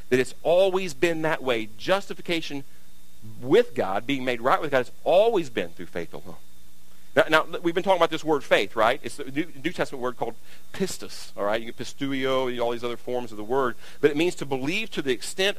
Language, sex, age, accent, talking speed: English, male, 50-69, American, 225 wpm